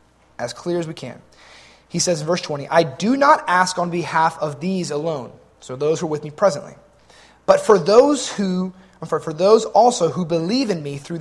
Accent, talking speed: American, 210 wpm